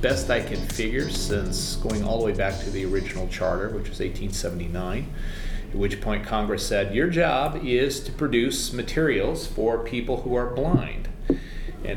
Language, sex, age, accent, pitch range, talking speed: English, male, 40-59, American, 95-125 Hz, 170 wpm